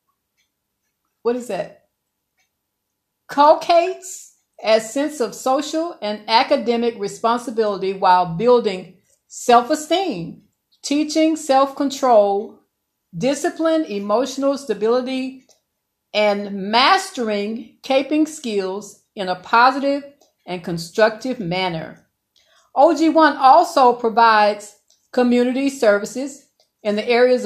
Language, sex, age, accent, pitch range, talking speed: English, female, 50-69, American, 210-295 Hz, 80 wpm